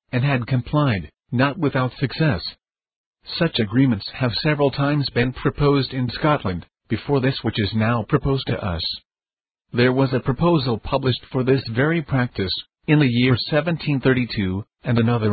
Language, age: English, 50-69